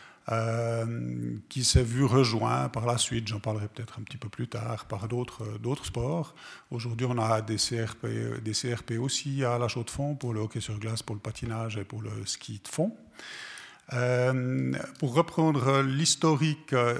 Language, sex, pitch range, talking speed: French, male, 115-130 Hz, 175 wpm